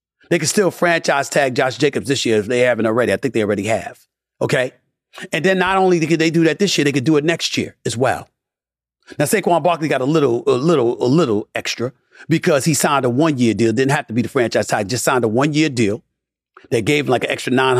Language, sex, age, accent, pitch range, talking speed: English, male, 40-59, American, 110-155 Hz, 255 wpm